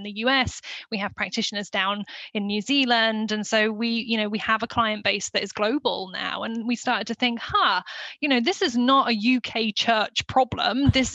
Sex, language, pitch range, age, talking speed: female, English, 215-245 Hz, 10-29, 210 wpm